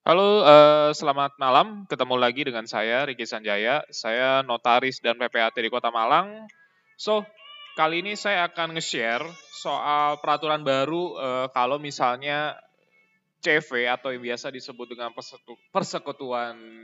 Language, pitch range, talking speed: English, 130-175 Hz, 130 wpm